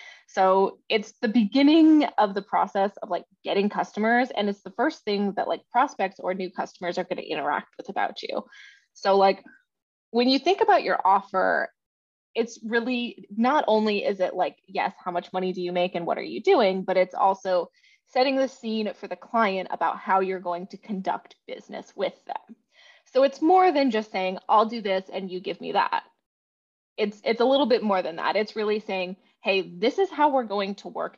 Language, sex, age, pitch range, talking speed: English, female, 20-39, 190-260 Hz, 205 wpm